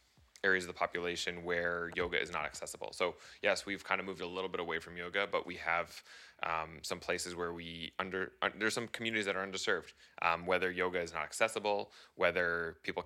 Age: 20-39